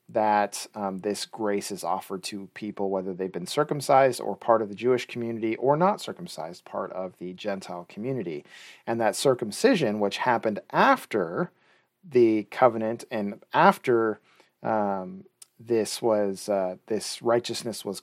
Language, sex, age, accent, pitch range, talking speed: English, male, 40-59, American, 100-120 Hz, 145 wpm